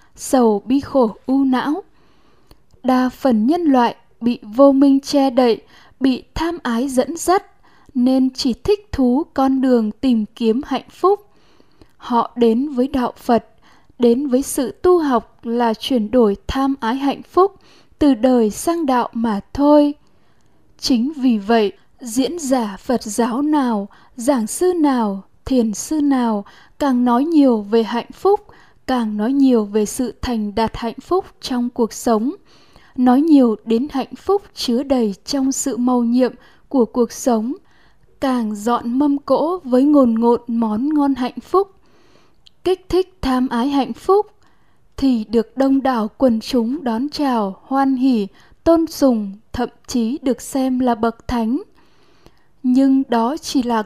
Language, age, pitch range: Vietnamese, 10-29, 235-280 Hz